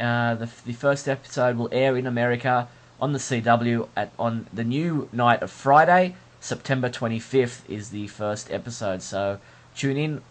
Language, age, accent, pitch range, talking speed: English, 20-39, Australian, 115-135 Hz, 165 wpm